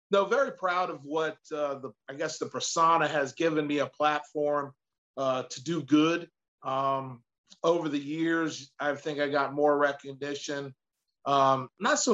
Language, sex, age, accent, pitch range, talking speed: English, male, 40-59, American, 140-165 Hz, 165 wpm